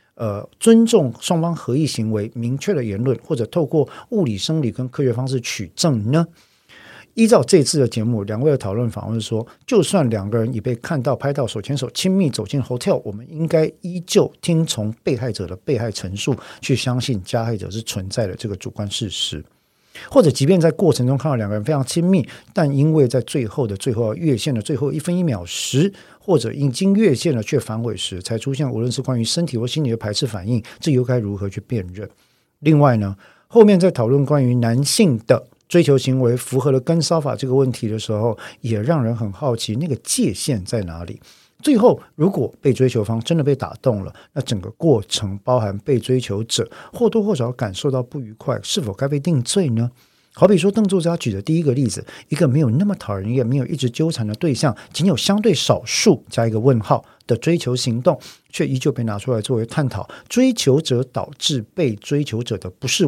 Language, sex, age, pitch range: Chinese, male, 50-69, 115-155 Hz